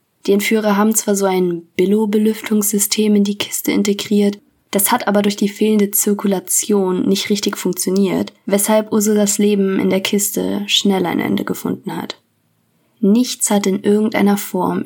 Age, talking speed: 20-39, 150 wpm